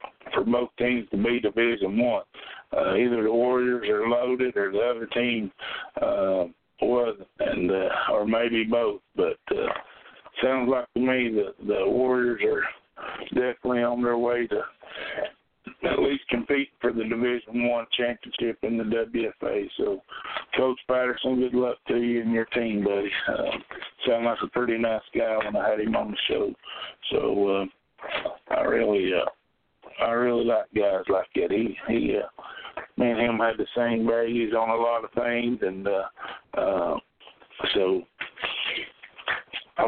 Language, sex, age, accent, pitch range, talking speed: English, male, 60-79, American, 115-125 Hz, 160 wpm